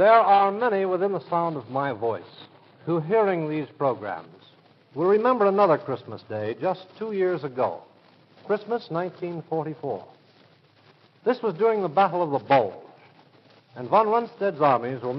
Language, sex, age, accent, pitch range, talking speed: English, male, 60-79, American, 135-185 Hz, 145 wpm